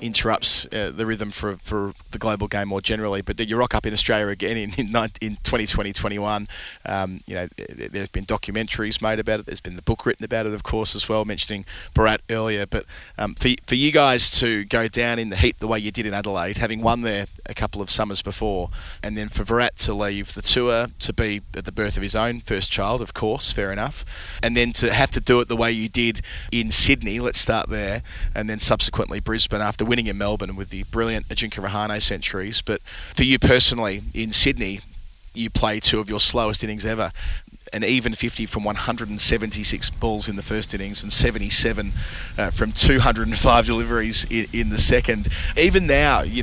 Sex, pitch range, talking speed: male, 105-115 Hz, 205 wpm